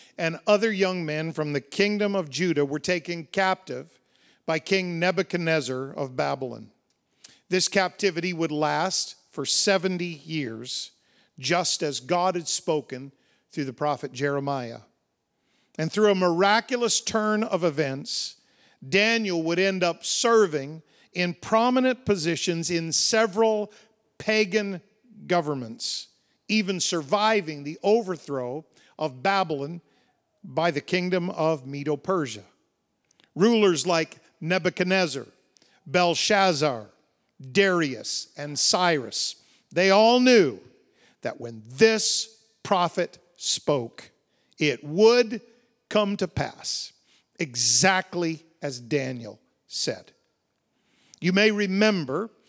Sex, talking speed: male, 105 wpm